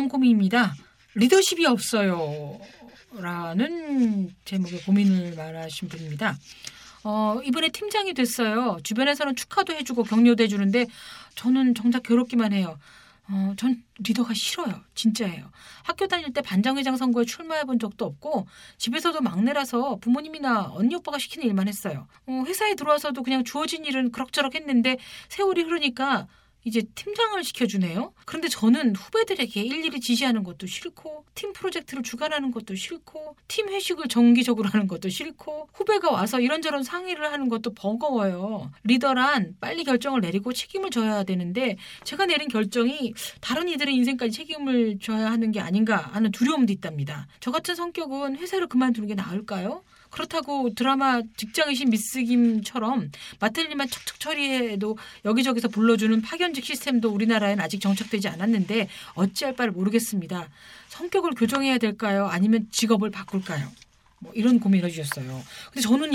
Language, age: Korean, 40-59